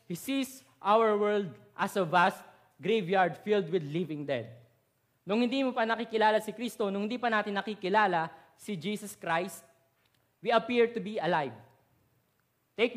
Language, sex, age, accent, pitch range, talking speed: English, male, 20-39, Filipino, 145-220 Hz, 155 wpm